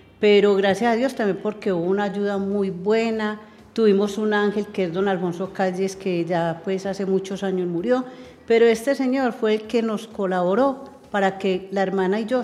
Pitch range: 185-220 Hz